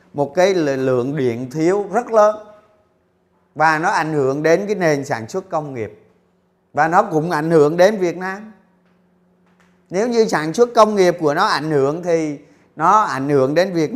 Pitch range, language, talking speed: 135-185 Hz, Vietnamese, 180 wpm